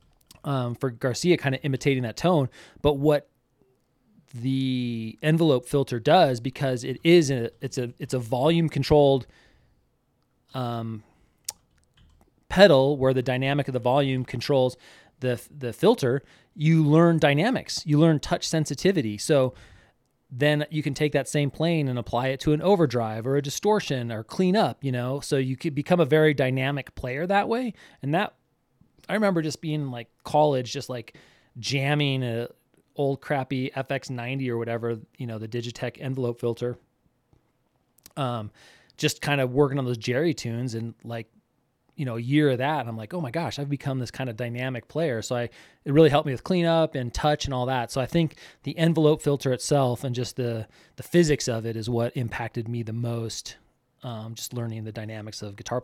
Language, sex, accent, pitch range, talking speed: English, male, American, 120-150 Hz, 180 wpm